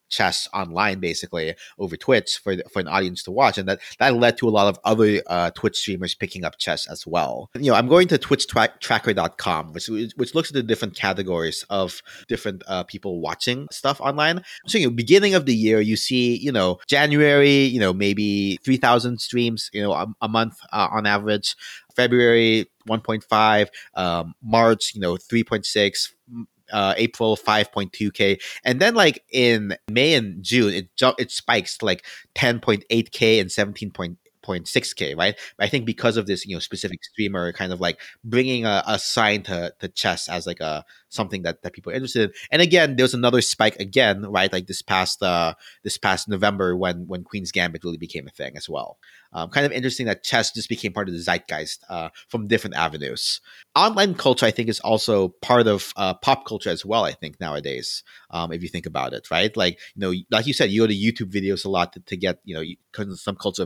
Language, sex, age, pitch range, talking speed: English, male, 30-49, 95-120 Hz, 200 wpm